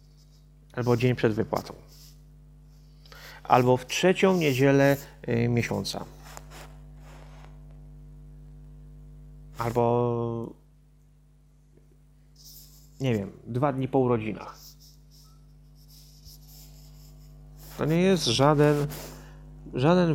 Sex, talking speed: male, 65 wpm